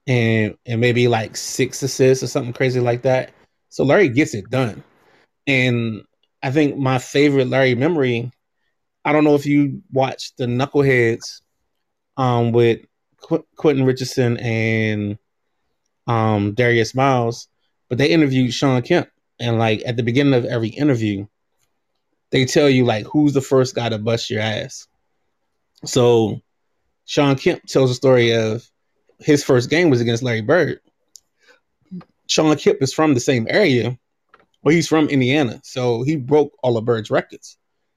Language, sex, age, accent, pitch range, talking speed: English, male, 20-39, American, 120-145 Hz, 155 wpm